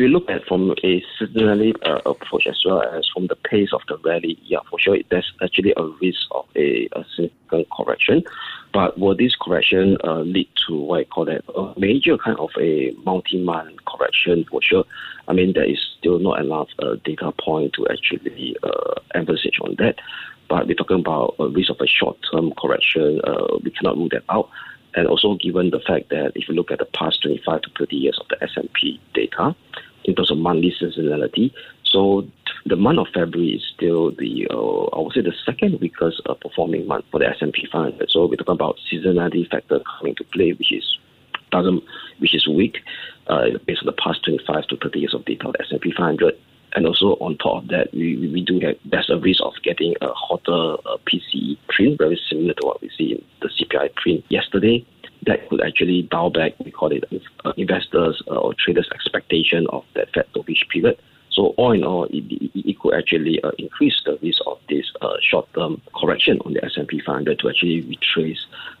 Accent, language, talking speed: Malaysian, English, 205 wpm